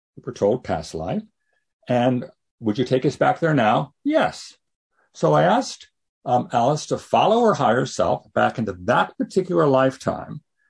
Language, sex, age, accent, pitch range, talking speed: English, male, 60-79, American, 125-200 Hz, 155 wpm